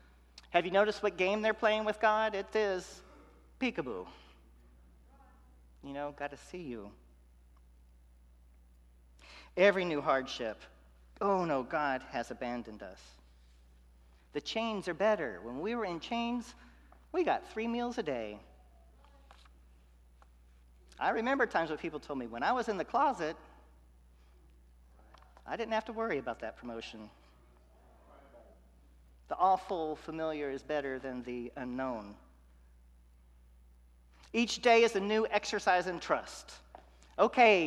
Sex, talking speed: male, 125 wpm